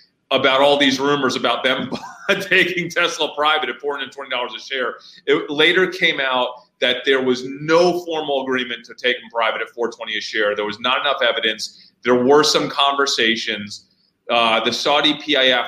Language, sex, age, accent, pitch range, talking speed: English, male, 30-49, American, 125-160 Hz, 170 wpm